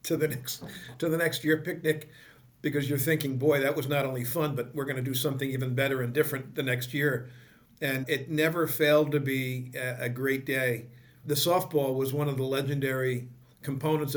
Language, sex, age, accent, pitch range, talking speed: English, male, 50-69, American, 135-155 Hz, 200 wpm